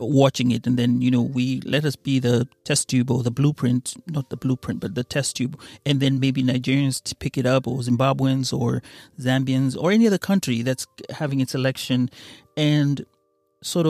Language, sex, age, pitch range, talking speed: Swahili, male, 30-49, 125-145 Hz, 195 wpm